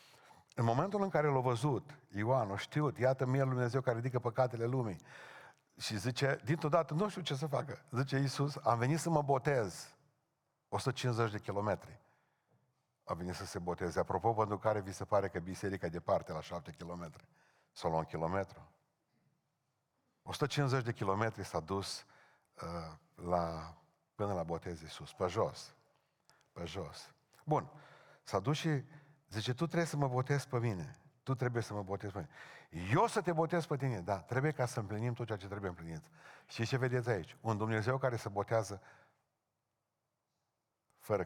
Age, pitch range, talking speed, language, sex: 50-69, 100-135 Hz, 170 wpm, Romanian, male